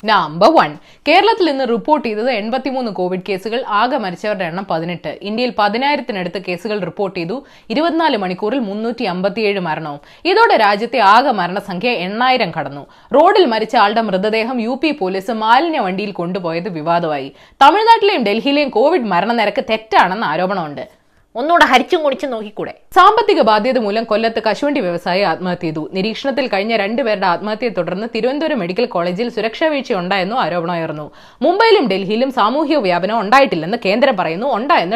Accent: native